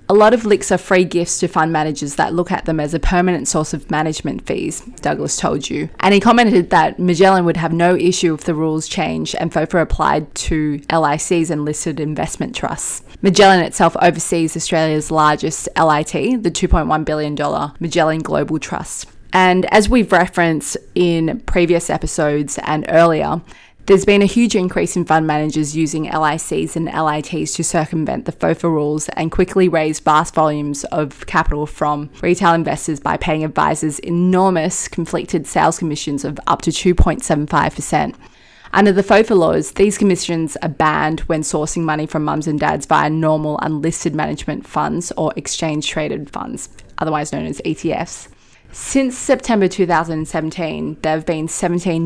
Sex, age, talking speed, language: female, 20-39, 160 wpm, English